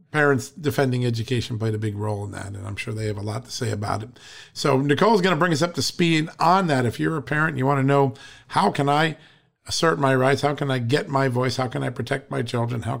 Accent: American